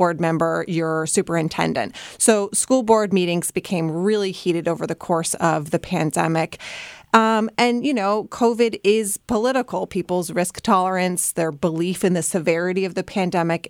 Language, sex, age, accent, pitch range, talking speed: English, female, 30-49, American, 170-200 Hz, 155 wpm